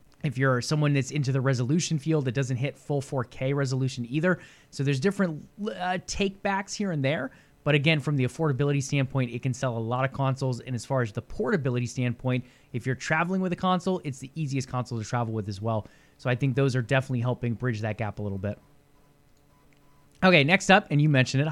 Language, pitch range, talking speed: English, 135-170 Hz, 225 wpm